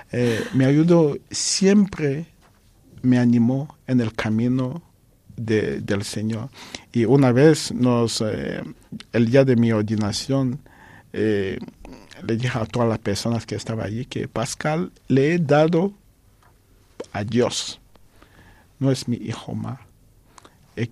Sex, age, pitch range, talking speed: male, 50-69, 110-125 Hz, 125 wpm